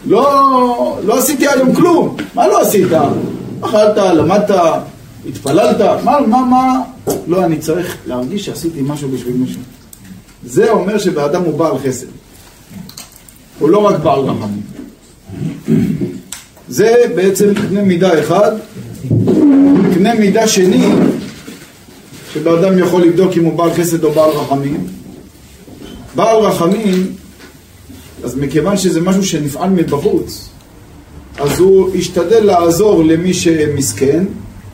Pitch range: 145-205 Hz